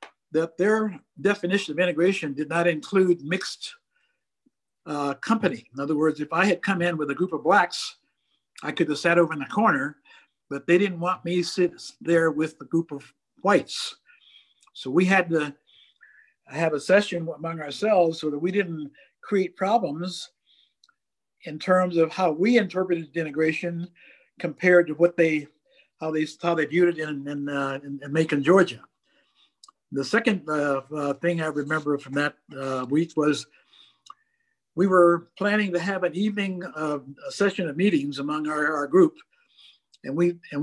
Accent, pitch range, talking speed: American, 155-190 Hz, 170 wpm